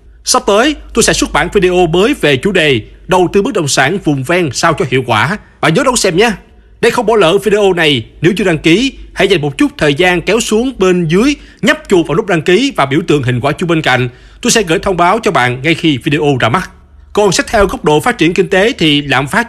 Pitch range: 145-200 Hz